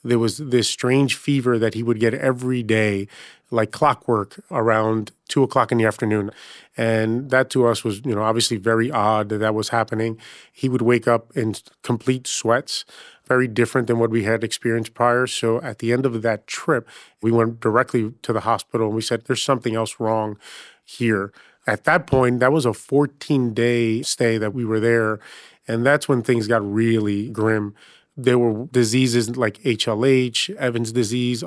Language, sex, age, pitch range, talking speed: English, male, 30-49, 110-125 Hz, 185 wpm